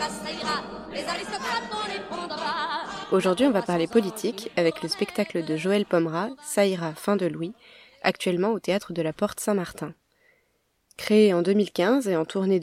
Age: 20-39